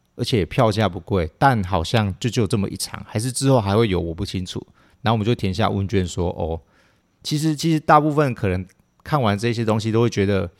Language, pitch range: Chinese, 95-125 Hz